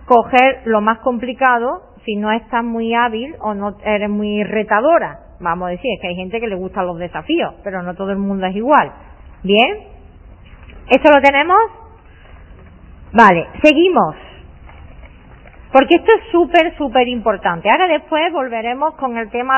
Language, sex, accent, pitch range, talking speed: Spanish, female, Spanish, 210-285 Hz, 155 wpm